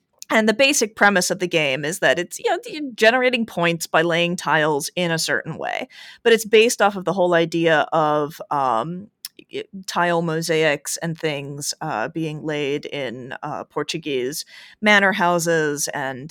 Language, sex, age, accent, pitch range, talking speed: English, female, 30-49, American, 165-230 Hz, 165 wpm